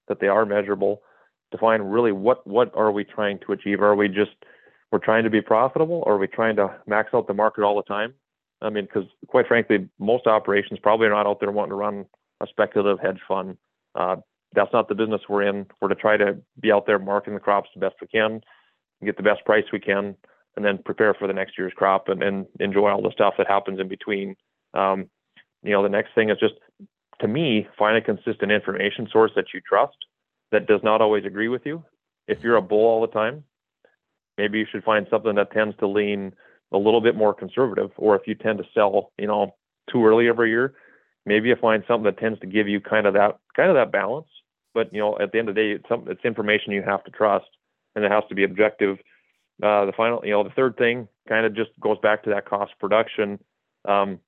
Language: English